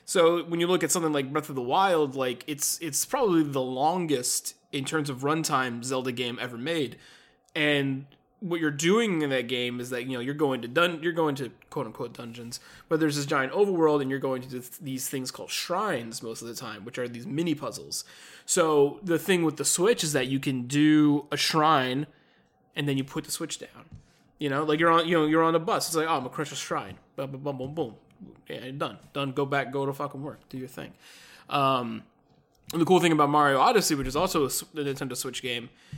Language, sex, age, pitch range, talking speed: English, male, 20-39, 130-160 Hz, 225 wpm